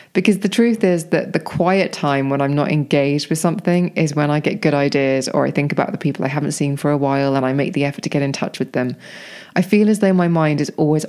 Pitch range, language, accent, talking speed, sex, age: 145-180 Hz, English, British, 275 wpm, female, 20-39